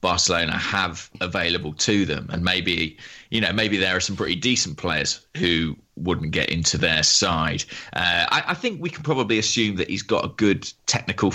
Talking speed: 190 wpm